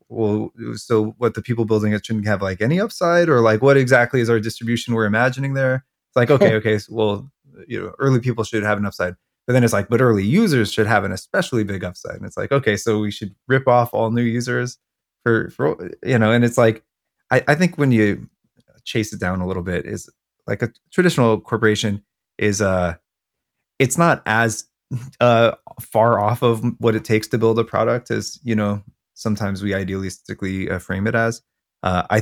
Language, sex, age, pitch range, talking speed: English, male, 20-39, 95-120 Hz, 205 wpm